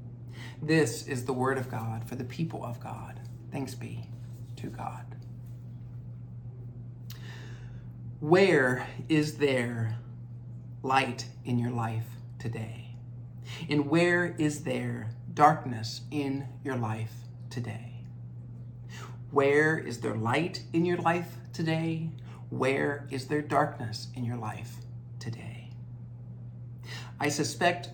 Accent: American